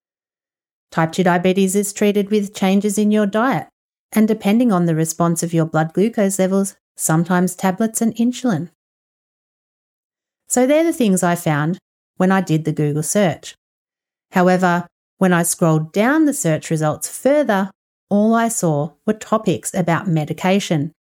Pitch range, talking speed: 160-220 Hz, 150 wpm